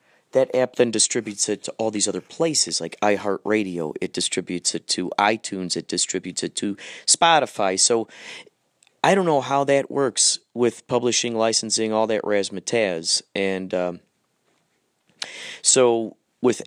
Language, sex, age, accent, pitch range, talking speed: English, male, 30-49, American, 95-120 Hz, 140 wpm